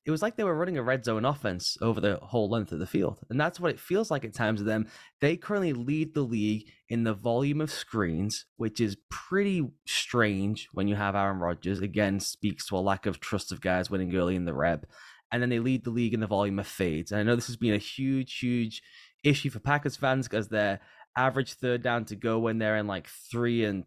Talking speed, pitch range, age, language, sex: 245 wpm, 105-130 Hz, 10-29, English, male